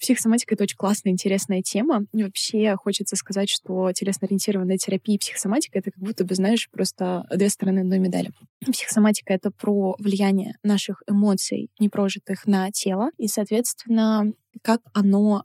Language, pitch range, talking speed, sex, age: Russian, 195-225 Hz, 145 wpm, female, 20-39